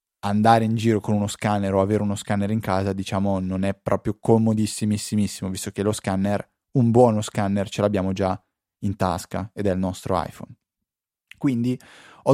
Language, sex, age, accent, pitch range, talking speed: Italian, male, 20-39, native, 100-125 Hz, 175 wpm